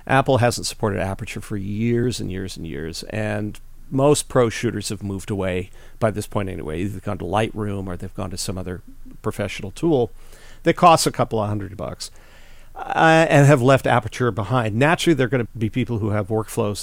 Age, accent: 40-59, American